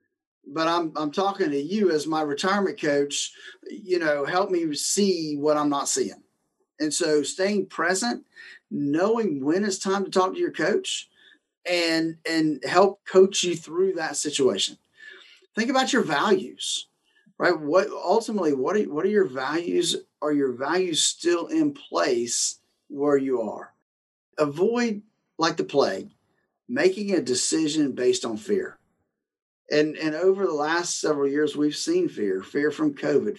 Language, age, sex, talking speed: English, 40-59, male, 155 wpm